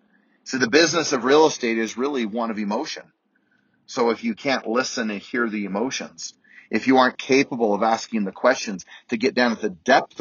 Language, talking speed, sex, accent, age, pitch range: English, 200 wpm, male, American, 40-59, 100-125 Hz